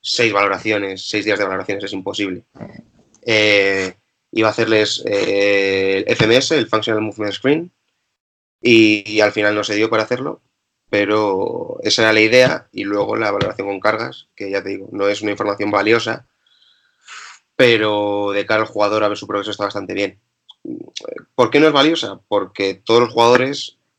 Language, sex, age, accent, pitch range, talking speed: Spanish, male, 20-39, Spanish, 100-120 Hz, 175 wpm